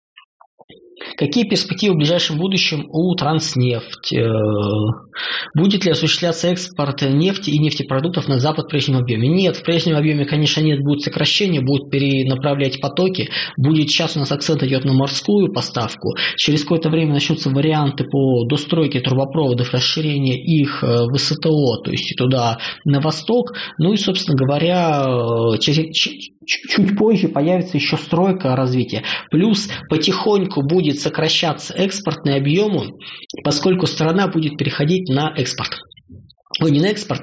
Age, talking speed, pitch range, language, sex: 20-39, 135 wpm, 135-165 Hz, Russian, male